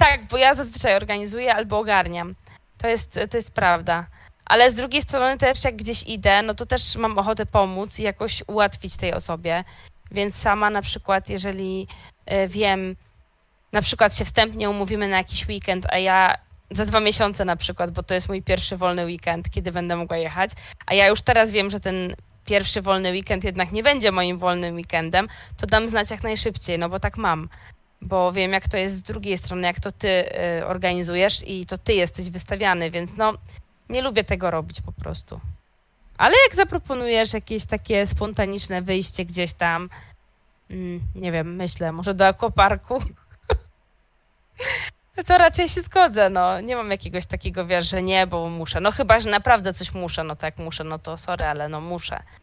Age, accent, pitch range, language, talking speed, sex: 20-39, native, 180-220 Hz, Polish, 180 wpm, female